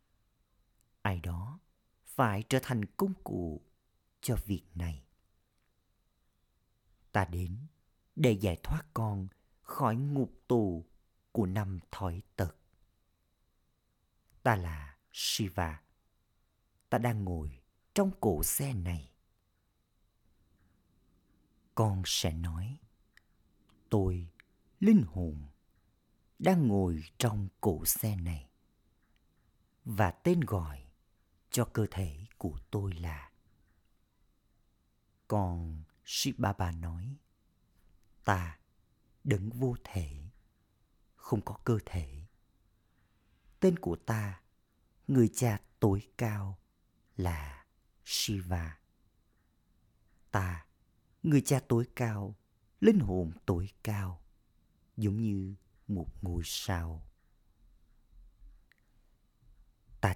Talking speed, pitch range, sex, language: 90 wpm, 85-110 Hz, male, Vietnamese